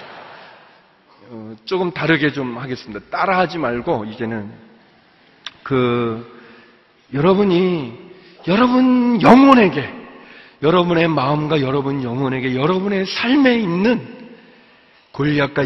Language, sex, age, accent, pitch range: Korean, male, 40-59, native, 130-215 Hz